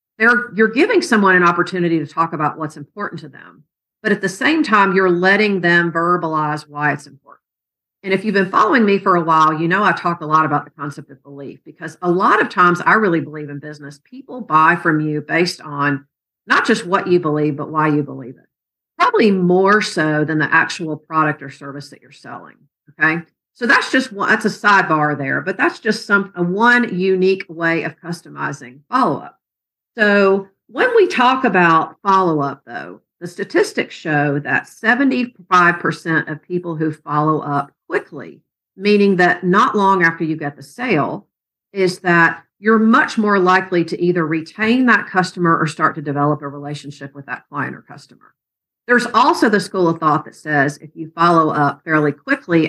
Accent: American